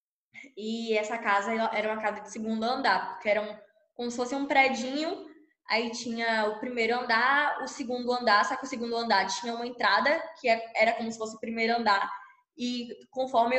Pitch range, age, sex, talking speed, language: 220-290 Hz, 10-29, female, 190 wpm, Portuguese